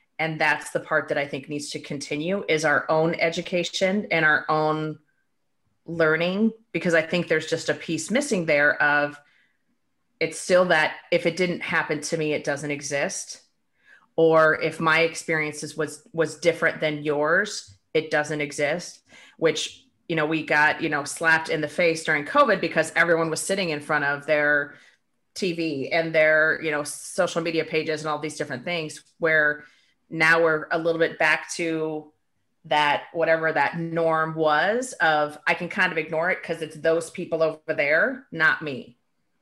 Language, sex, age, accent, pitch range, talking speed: English, female, 30-49, American, 150-170 Hz, 175 wpm